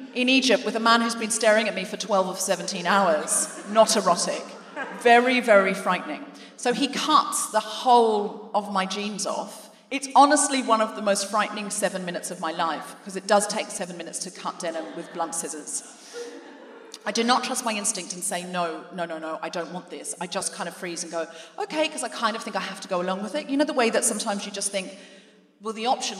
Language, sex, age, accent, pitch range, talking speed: English, female, 40-59, British, 185-235 Hz, 230 wpm